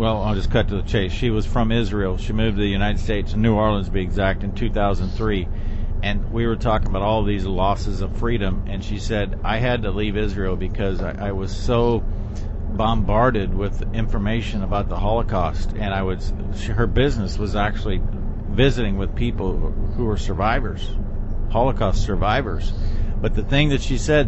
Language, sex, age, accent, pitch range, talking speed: English, male, 50-69, American, 100-120 Hz, 190 wpm